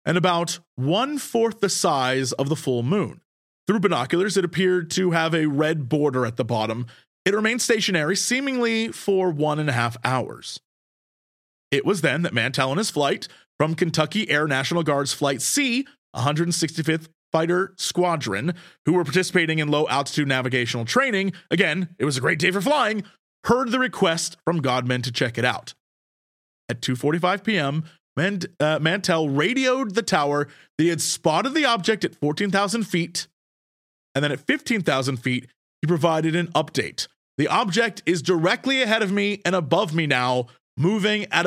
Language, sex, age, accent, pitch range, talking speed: English, male, 30-49, American, 145-195 Hz, 160 wpm